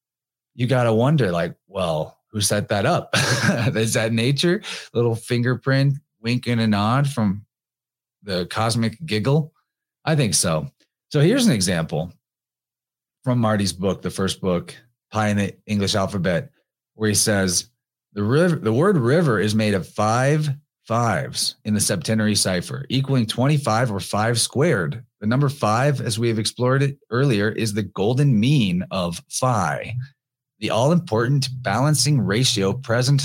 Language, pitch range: English, 110-140 Hz